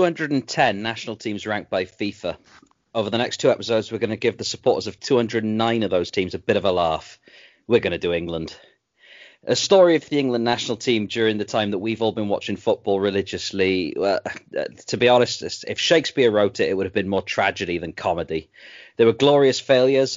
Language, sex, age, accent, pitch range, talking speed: English, male, 40-59, British, 100-125 Hz, 200 wpm